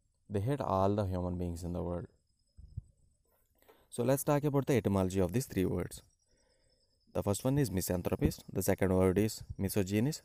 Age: 20-39